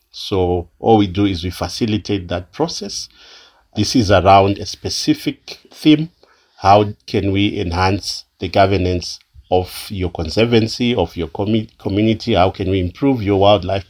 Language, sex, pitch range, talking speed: English, male, 95-110 Hz, 140 wpm